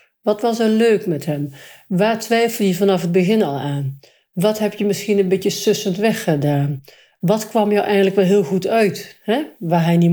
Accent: Dutch